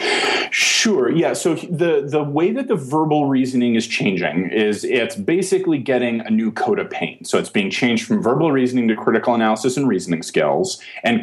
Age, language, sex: 30-49, English, male